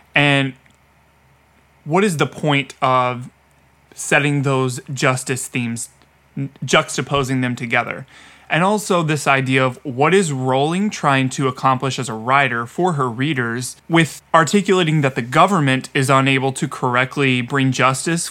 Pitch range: 125-145 Hz